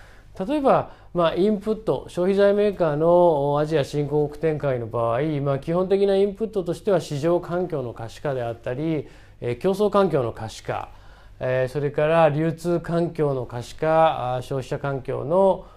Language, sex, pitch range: Japanese, male, 130-185 Hz